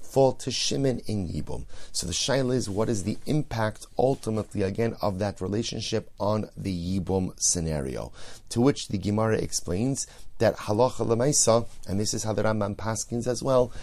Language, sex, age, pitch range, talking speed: English, male, 30-49, 95-115 Hz, 165 wpm